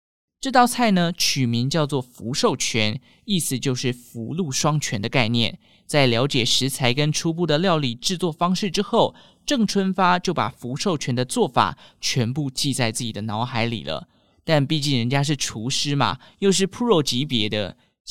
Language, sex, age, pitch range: Chinese, male, 20-39, 125-170 Hz